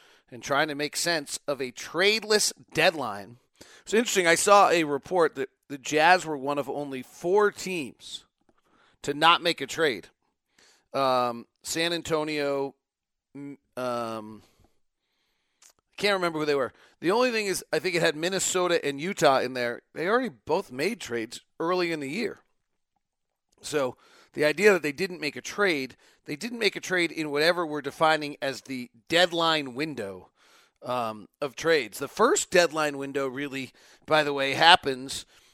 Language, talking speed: English, 160 wpm